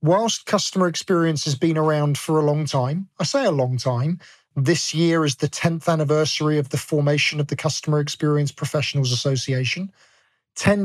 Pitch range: 145-185 Hz